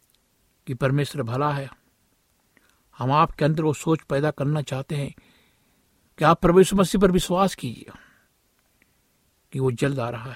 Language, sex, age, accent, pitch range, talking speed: Hindi, male, 60-79, native, 130-155 Hz, 145 wpm